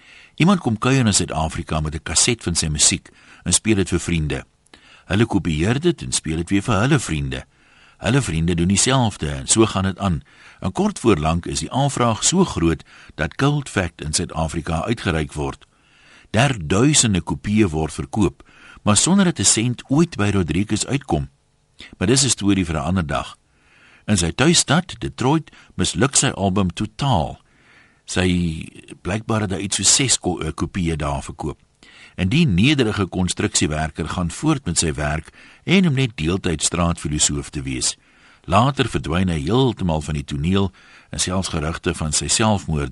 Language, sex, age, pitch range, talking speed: English, male, 60-79, 80-120 Hz, 170 wpm